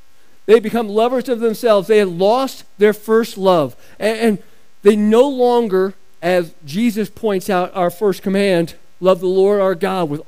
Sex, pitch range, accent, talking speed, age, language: male, 185-240 Hz, American, 165 wpm, 40-59, English